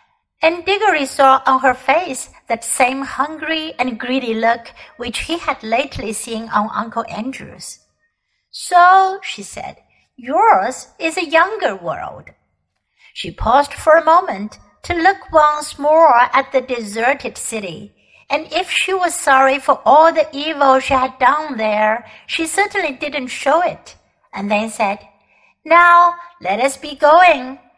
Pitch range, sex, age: 245-335 Hz, female, 60-79